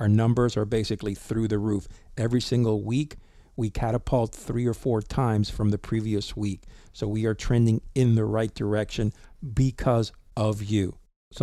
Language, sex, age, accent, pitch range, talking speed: English, male, 50-69, American, 105-120 Hz, 170 wpm